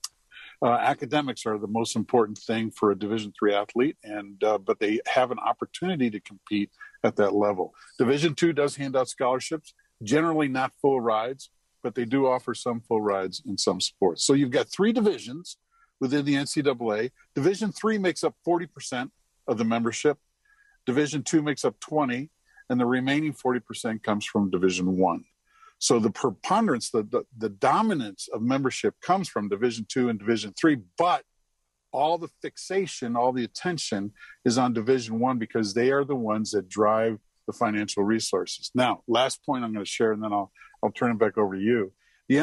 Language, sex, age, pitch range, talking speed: English, male, 50-69, 105-145 Hz, 180 wpm